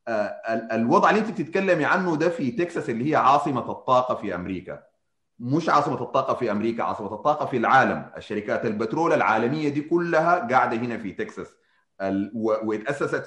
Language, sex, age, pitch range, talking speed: Arabic, male, 30-49, 105-155 Hz, 160 wpm